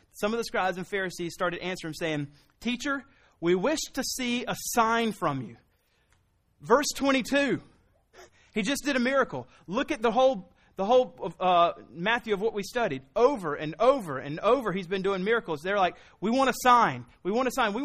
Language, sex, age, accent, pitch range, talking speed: English, male, 30-49, American, 150-225 Hz, 190 wpm